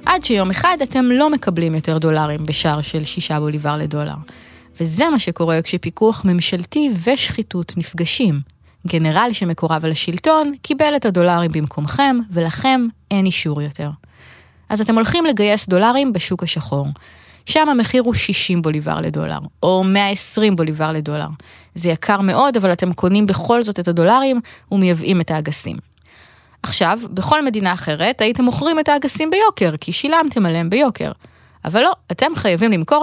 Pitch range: 165-235 Hz